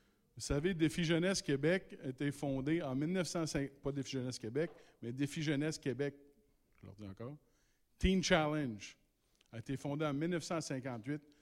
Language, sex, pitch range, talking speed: French, male, 130-160 Hz, 145 wpm